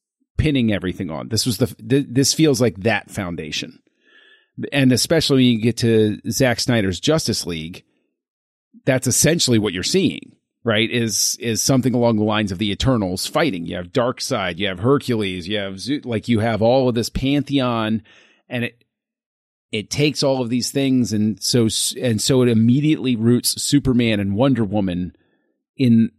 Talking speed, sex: 165 wpm, male